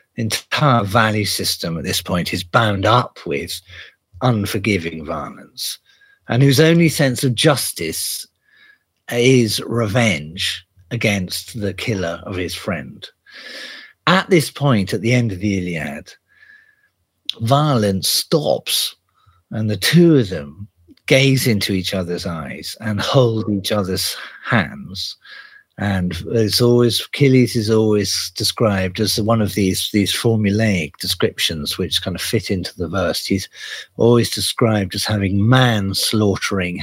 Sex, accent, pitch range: male, British, 95-125 Hz